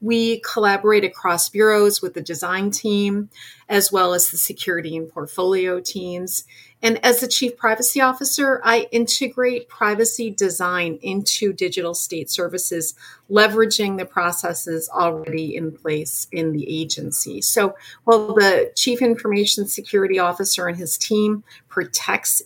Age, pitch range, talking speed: 40-59, 165-215 Hz, 135 wpm